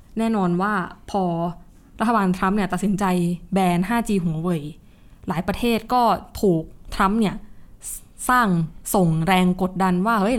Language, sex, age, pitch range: Thai, female, 20-39, 180-220 Hz